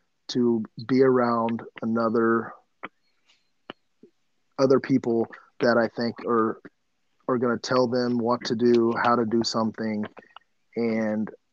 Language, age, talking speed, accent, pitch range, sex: English, 30-49, 120 wpm, American, 110-125 Hz, male